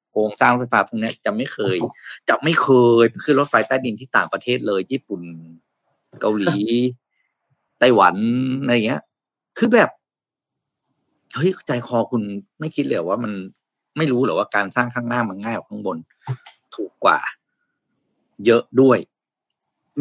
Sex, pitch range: male, 110-140 Hz